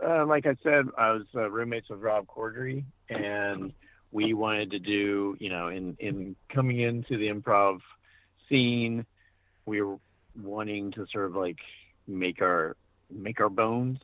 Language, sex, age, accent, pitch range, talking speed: English, male, 40-59, American, 90-120 Hz, 160 wpm